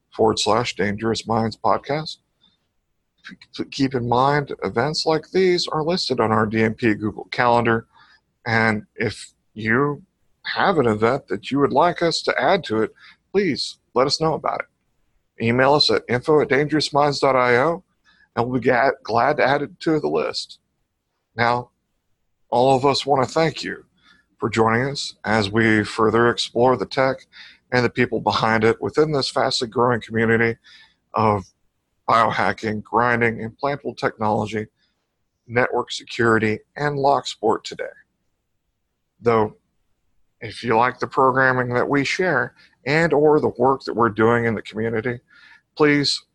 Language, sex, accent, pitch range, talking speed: English, male, American, 110-140 Hz, 140 wpm